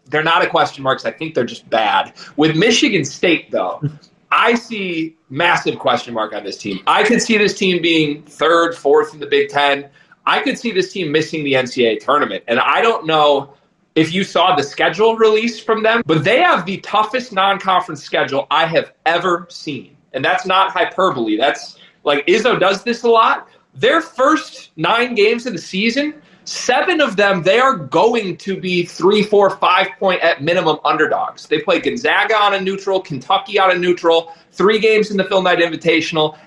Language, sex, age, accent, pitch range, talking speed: English, male, 30-49, American, 160-225 Hz, 190 wpm